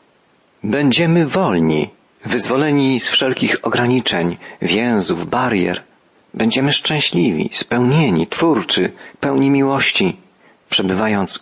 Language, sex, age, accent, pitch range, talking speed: Polish, male, 40-59, native, 100-130 Hz, 80 wpm